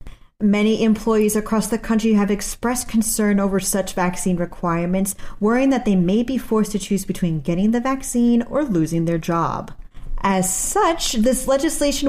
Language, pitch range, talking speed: English, 185-235 Hz, 160 wpm